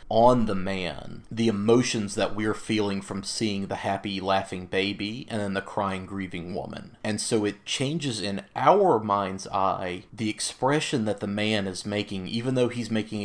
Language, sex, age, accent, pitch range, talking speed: English, male, 30-49, American, 100-115 Hz, 175 wpm